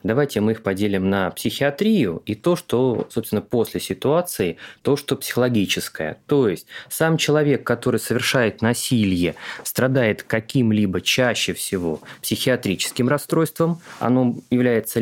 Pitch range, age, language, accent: 100-140 Hz, 20-39, Russian, native